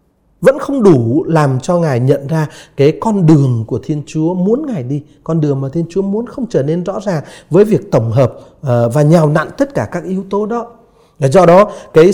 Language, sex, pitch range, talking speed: Vietnamese, male, 130-190 Hz, 225 wpm